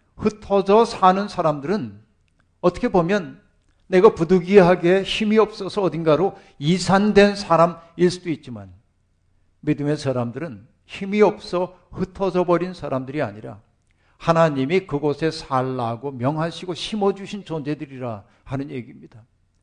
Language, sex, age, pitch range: Korean, male, 50-69, 130-185 Hz